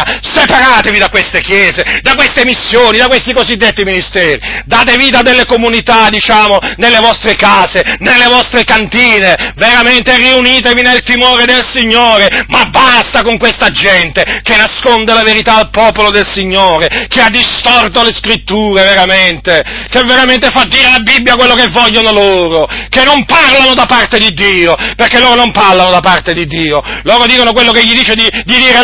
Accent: native